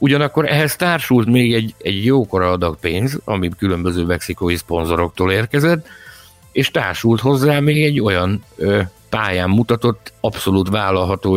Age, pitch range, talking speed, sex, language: 60-79, 95-115 Hz, 130 wpm, male, Hungarian